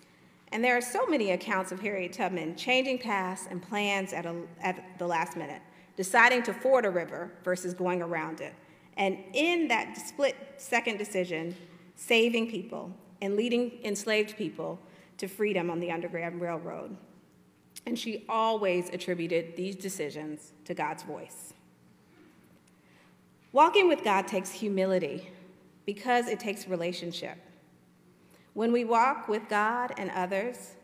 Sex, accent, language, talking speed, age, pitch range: female, American, English, 135 wpm, 40-59, 175-215 Hz